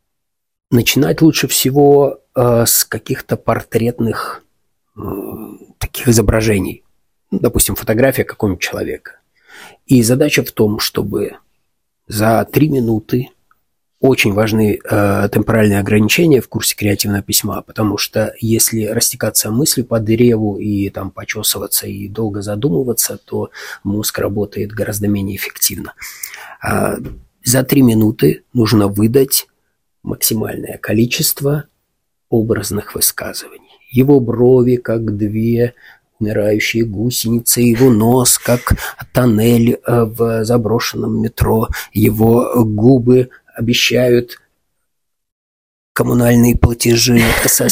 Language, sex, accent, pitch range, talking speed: Russian, male, native, 105-125 Hz, 100 wpm